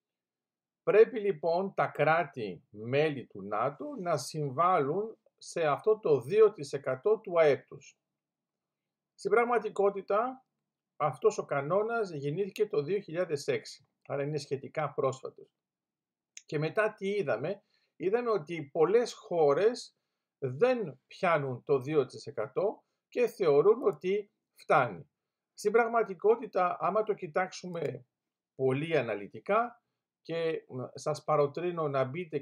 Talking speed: 100 wpm